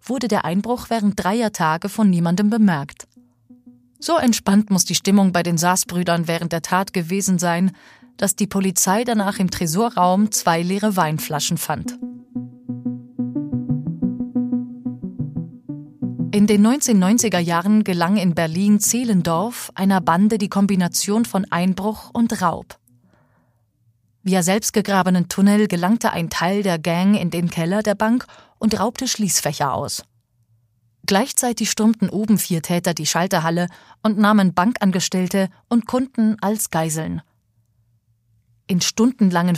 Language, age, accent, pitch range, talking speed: German, 30-49, German, 165-210 Hz, 125 wpm